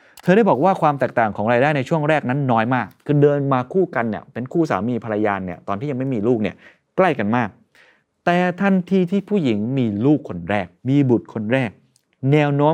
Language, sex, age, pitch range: Thai, male, 20-39, 105-150 Hz